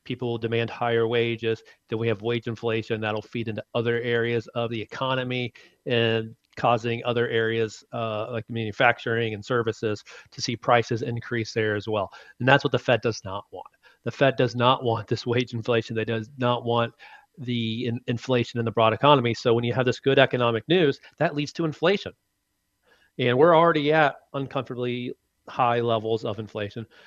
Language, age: English, 40-59